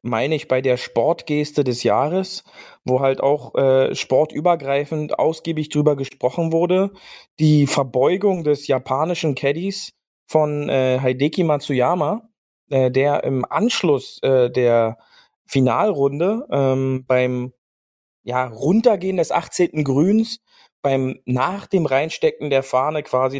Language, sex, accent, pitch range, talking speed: German, male, German, 130-160 Hz, 115 wpm